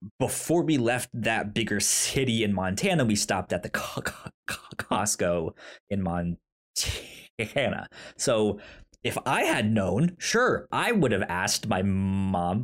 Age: 30-49